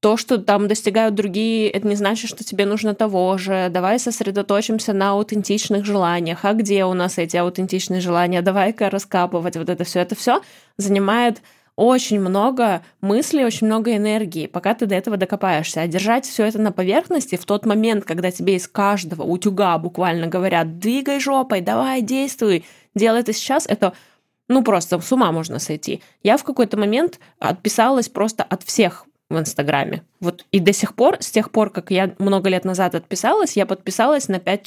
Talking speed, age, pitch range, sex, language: 175 wpm, 20-39, 180-225 Hz, female, Russian